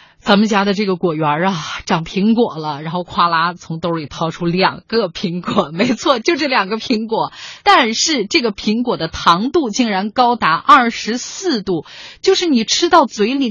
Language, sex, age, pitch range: Chinese, female, 30-49, 195-310 Hz